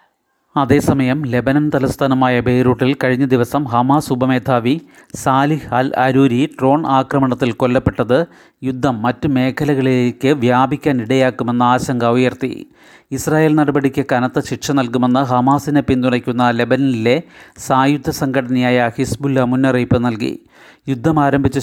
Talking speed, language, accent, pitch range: 100 wpm, Malayalam, native, 125-140 Hz